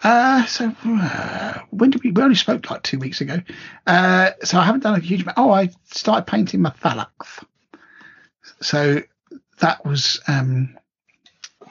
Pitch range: 140-190 Hz